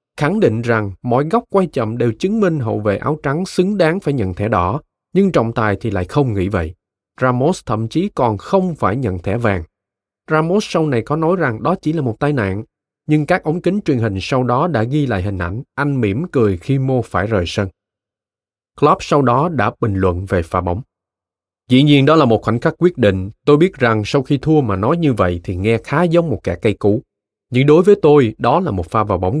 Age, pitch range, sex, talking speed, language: 20-39, 105-155 Hz, male, 235 wpm, Vietnamese